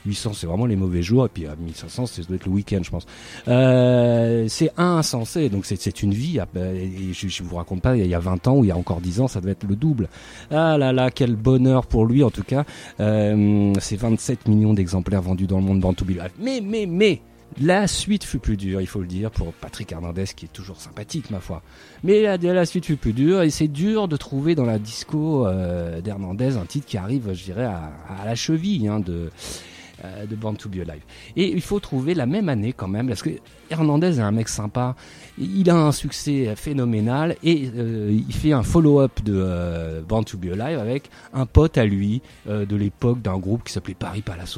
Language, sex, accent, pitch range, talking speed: French, male, French, 95-140 Hz, 230 wpm